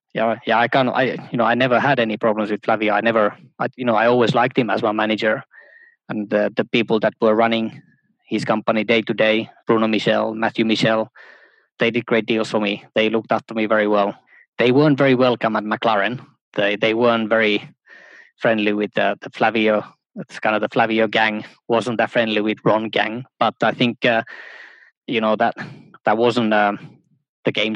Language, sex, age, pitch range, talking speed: English, male, 20-39, 105-115 Hz, 200 wpm